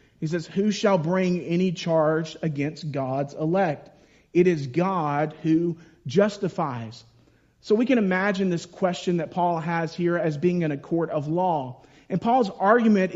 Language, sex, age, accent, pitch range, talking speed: English, male, 40-59, American, 160-200 Hz, 160 wpm